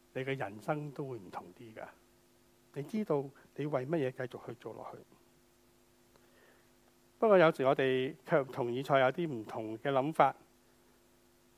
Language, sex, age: Chinese, male, 60-79